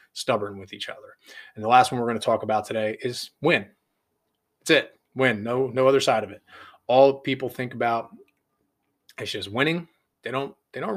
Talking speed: 195 wpm